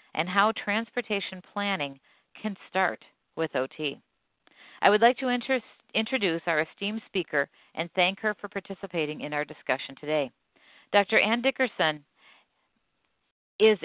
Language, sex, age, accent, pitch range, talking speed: English, female, 50-69, American, 155-200 Hz, 125 wpm